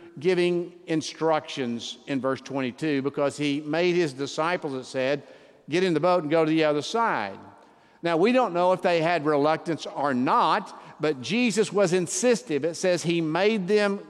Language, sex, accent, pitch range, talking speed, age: English, male, American, 150-200 Hz, 175 wpm, 50-69